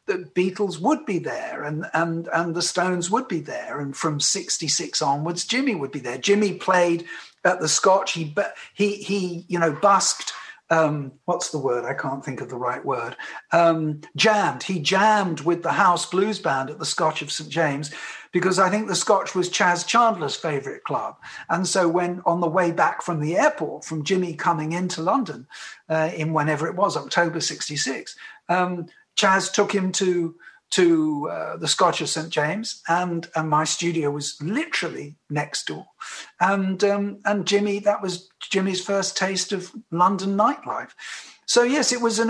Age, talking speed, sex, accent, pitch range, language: 50-69, 180 wpm, male, British, 160-200 Hz, English